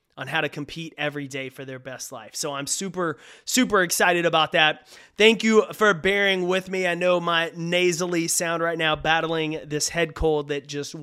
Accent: American